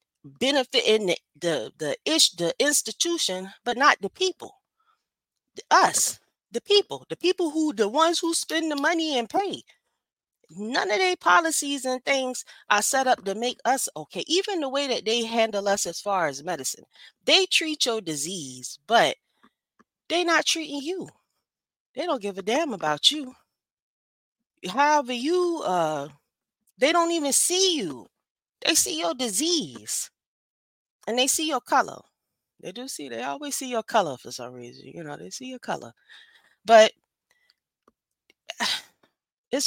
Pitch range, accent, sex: 195-305 Hz, American, female